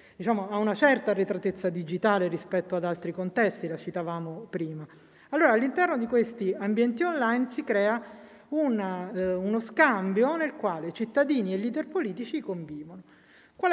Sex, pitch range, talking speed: female, 185-235 Hz, 145 wpm